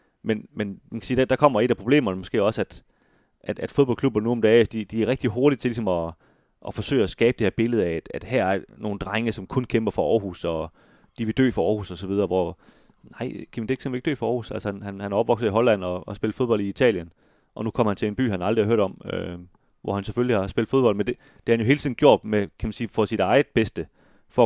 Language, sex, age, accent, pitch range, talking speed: Danish, male, 30-49, native, 95-115 Hz, 270 wpm